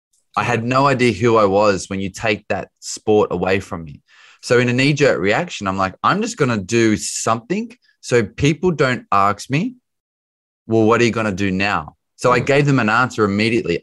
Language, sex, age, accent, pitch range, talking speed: English, male, 20-39, Australian, 95-125 Hz, 215 wpm